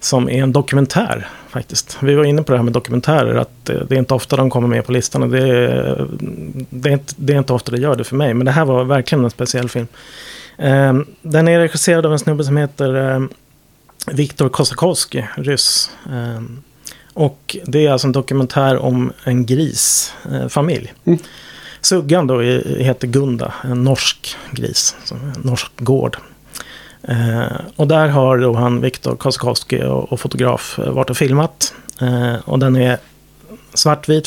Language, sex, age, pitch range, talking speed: Swedish, male, 30-49, 125-140 Hz, 165 wpm